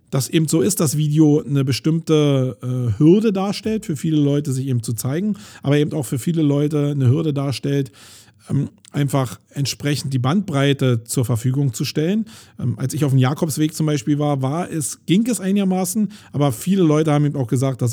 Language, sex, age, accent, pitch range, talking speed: German, male, 40-59, German, 135-170 Hz, 185 wpm